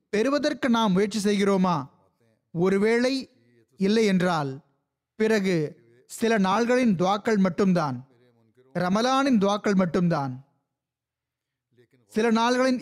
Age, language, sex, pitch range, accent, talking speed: 30-49, Tamil, male, 170-230 Hz, native, 60 wpm